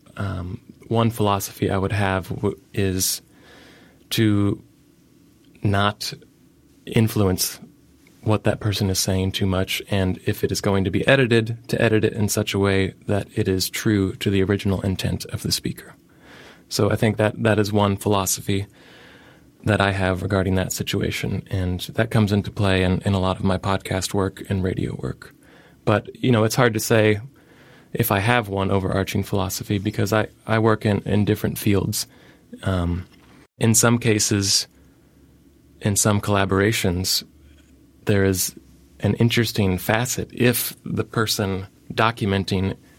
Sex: male